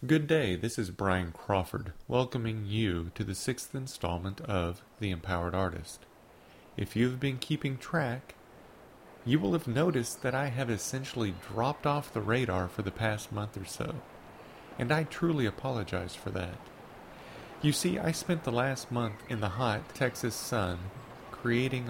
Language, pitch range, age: English, 100-130 Hz, 40-59